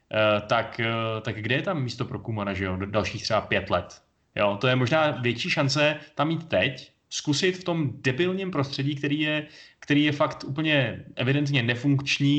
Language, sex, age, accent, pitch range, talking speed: Czech, male, 20-39, native, 120-145 Hz, 190 wpm